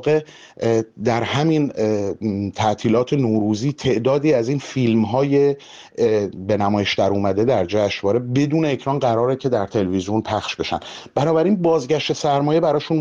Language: Persian